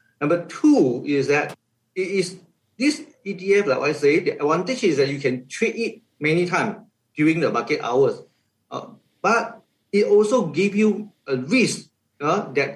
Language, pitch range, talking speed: English, 145-210 Hz, 165 wpm